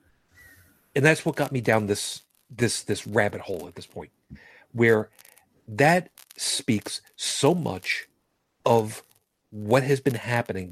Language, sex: English, male